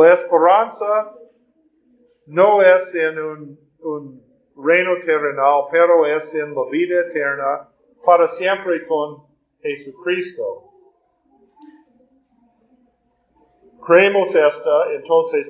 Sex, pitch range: male, 160-225 Hz